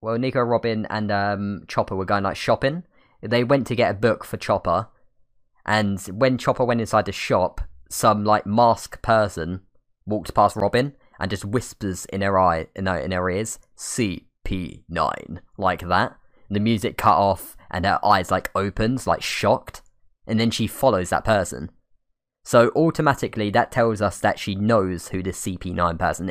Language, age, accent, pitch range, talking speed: English, 10-29, British, 95-120 Hz, 180 wpm